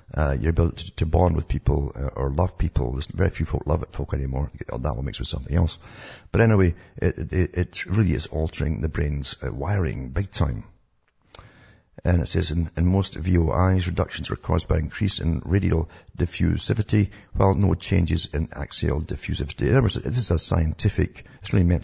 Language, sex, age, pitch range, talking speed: English, male, 60-79, 80-100 Hz, 190 wpm